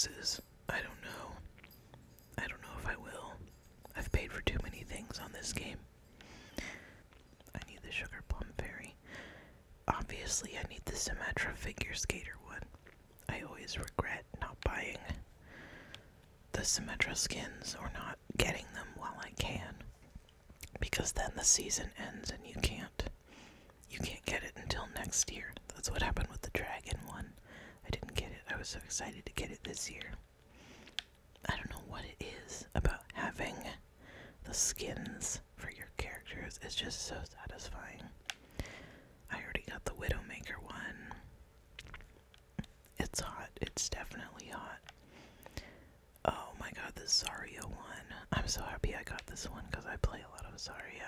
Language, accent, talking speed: English, American, 140 wpm